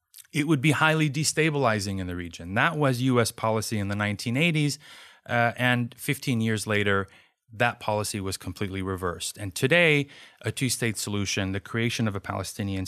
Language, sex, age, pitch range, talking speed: English, male, 30-49, 100-135 Hz, 165 wpm